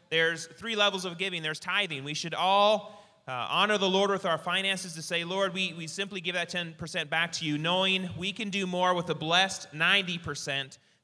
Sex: male